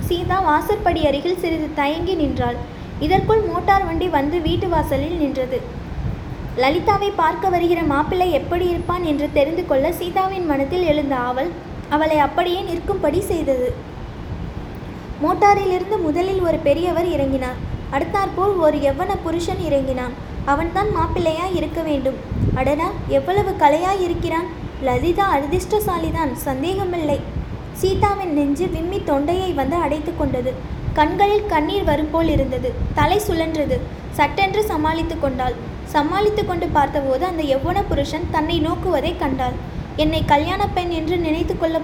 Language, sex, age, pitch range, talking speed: English, female, 20-39, 290-365 Hz, 115 wpm